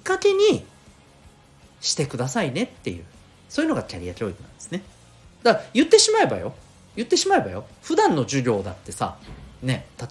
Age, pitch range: 40-59, 100-135 Hz